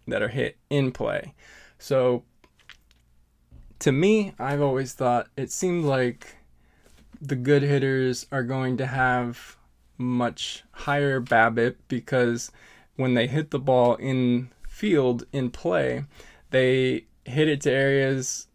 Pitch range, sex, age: 120-135 Hz, male, 20-39